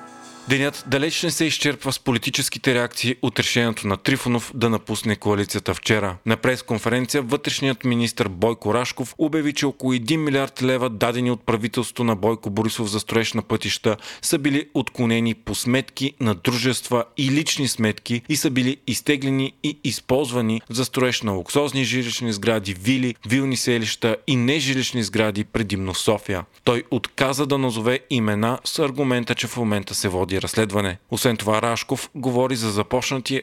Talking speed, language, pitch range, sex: 155 wpm, Bulgarian, 110-130 Hz, male